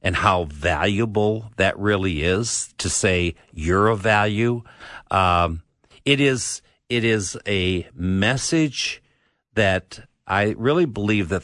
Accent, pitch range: American, 90-115 Hz